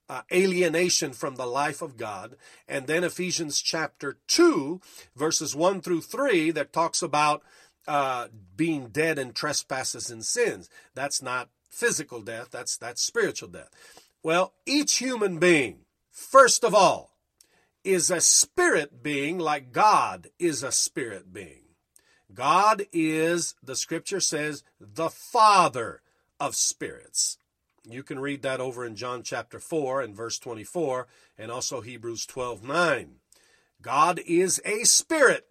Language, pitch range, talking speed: English, 140-190 Hz, 135 wpm